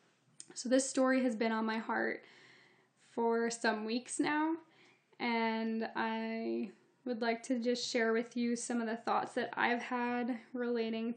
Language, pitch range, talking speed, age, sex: English, 215-245 Hz, 155 wpm, 10-29, female